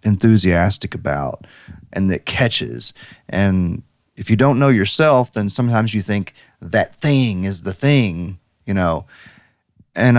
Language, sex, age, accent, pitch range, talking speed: English, male, 30-49, American, 95-120 Hz, 135 wpm